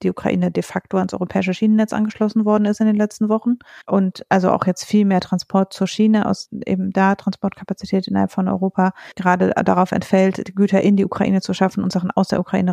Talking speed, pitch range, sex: 210 wpm, 185-215 Hz, female